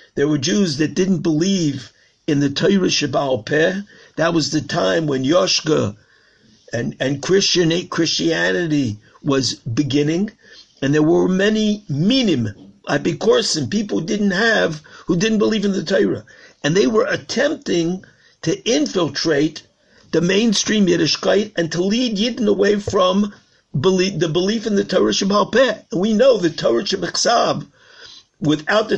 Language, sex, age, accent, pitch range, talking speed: English, male, 60-79, American, 160-215 Hz, 145 wpm